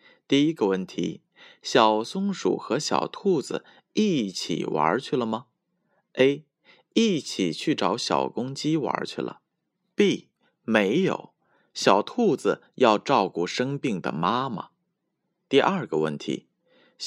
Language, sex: Chinese, male